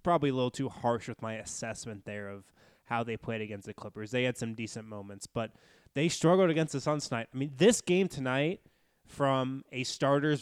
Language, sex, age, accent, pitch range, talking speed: English, male, 20-39, American, 115-150 Hz, 205 wpm